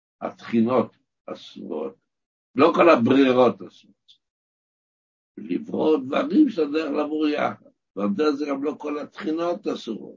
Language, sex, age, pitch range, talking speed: Hebrew, male, 60-79, 115-185 Hz, 95 wpm